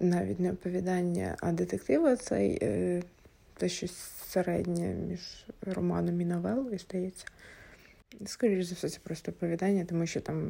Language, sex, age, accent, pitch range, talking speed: Ukrainian, female, 20-39, native, 180-205 Hz, 130 wpm